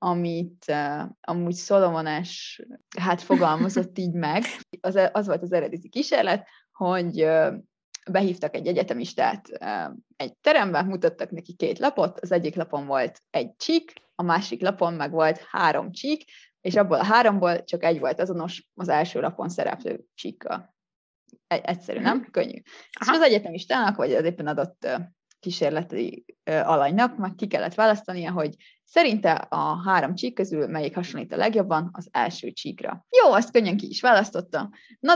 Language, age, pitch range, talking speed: Hungarian, 20-39, 165-210 Hz, 155 wpm